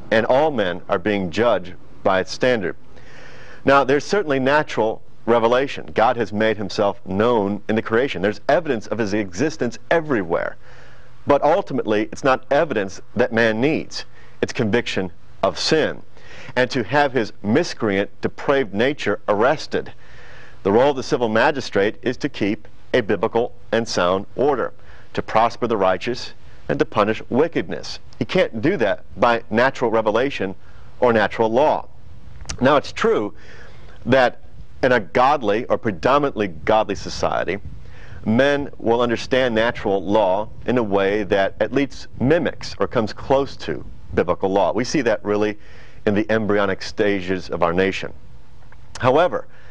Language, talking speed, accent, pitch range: English, 145 wpm, American, 100-125 Hz